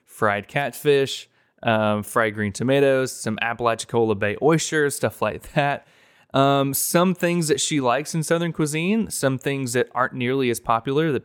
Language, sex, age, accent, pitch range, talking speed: English, male, 20-39, American, 110-140 Hz, 160 wpm